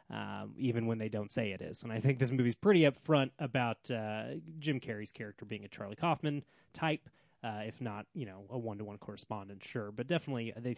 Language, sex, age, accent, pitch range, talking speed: English, male, 20-39, American, 115-150 Hz, 205 wpm